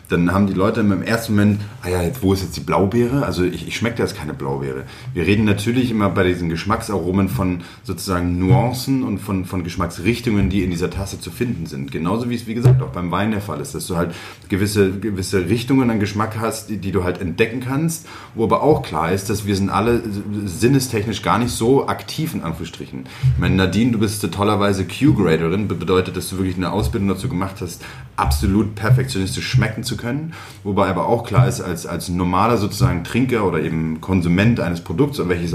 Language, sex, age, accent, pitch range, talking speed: German, male, 30-49, German, 90-115 Hz, 210 wpm